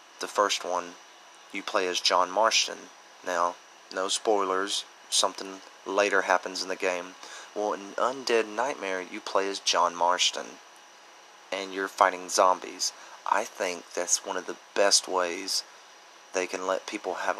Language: English